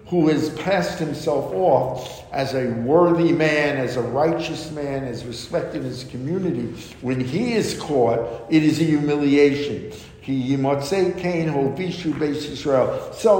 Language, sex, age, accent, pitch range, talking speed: English, male, 60-79, American, 135-175 Hz, 125 wpm